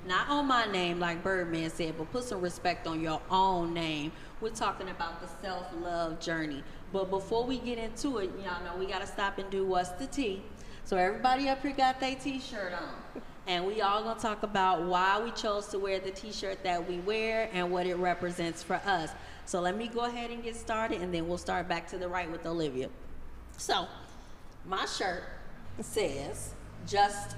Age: 30-49